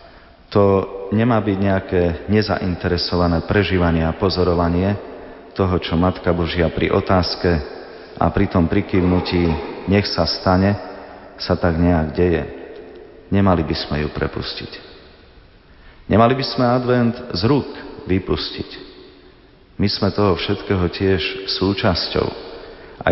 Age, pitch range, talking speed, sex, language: 40-59, 85-100 Hz, 115 wpm, male, Slovak